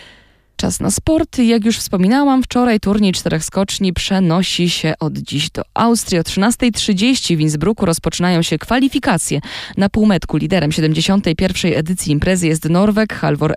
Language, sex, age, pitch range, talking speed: Polish, female, 20-39, 160-215 Hz, 140 wpm